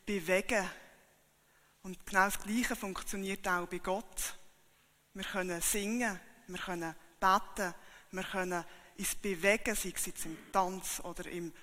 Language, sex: German, female